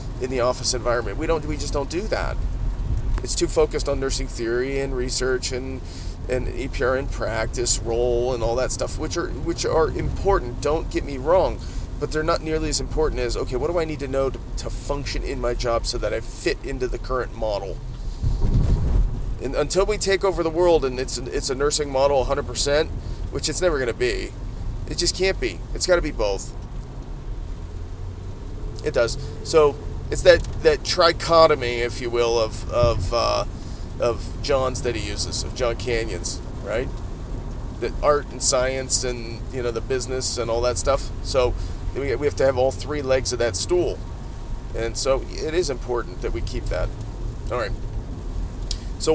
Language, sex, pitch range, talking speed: English, male, 115-145 Hz, 190 wpm